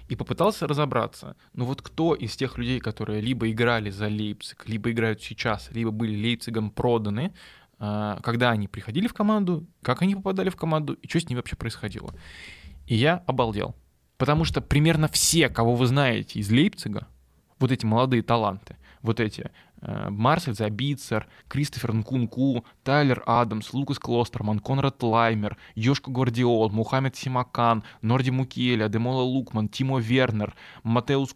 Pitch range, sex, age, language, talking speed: 110-130 Hz, male, 20-39, Russian, 145 wpm